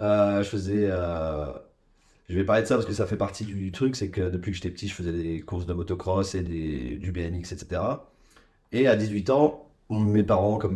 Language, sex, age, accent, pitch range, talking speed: French, male, 30-49, French, 90-110 Hz, 230 wpm